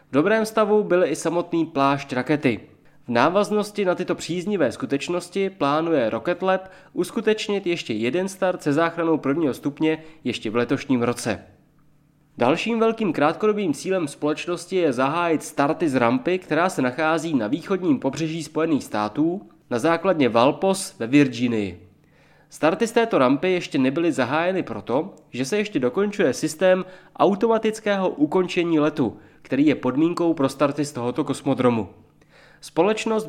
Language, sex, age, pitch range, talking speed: Czech, male, 20-39, 135-185 Hz, 140 wpm